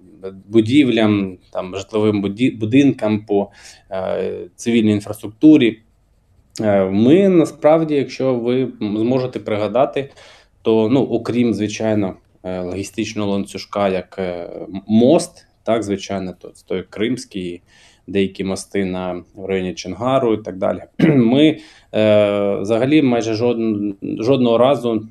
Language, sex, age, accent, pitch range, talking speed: Ukrainian, male, 20-39, native, 95-115 Hz, 110 wpm